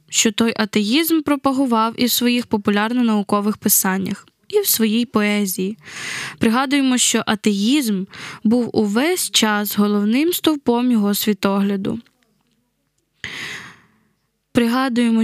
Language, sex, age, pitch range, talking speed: Ukrainian, female, 10-29, 210-250 Hz, 95 wpm